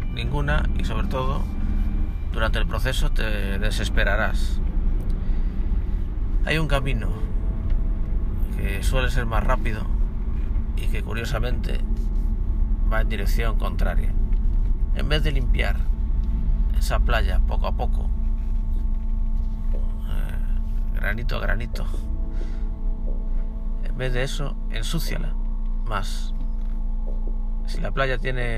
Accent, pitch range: Spanish, 75-105 Hz